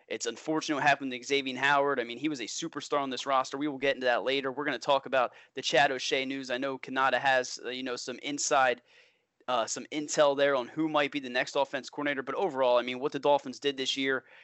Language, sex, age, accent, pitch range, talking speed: English, male, 20-39, American, 130-150 Hz, 260 wpm